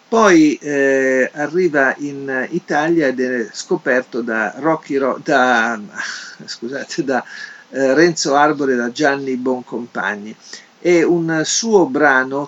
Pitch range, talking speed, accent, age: 120-150 Hz, 105 wpm, native, 50-69